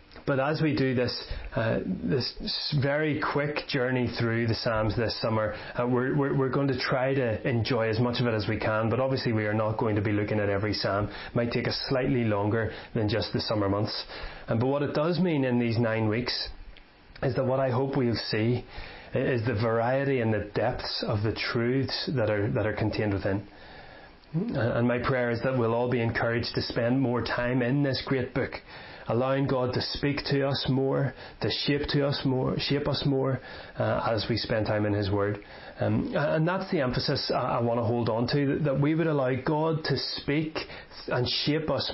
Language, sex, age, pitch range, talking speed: English, male, 30-49, 115-135 Hz, 210 wpm